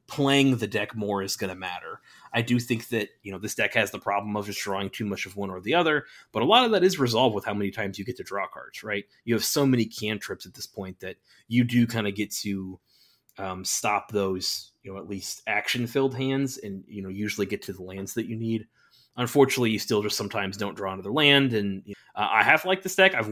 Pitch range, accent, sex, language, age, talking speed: 100-120 Hz, American, male, English, 30-49, 250 wpm